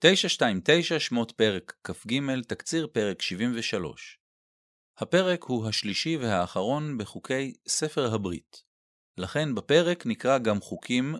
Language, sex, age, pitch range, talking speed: Hebrew, male, 40-59, 110-150 Hz, 100 wpm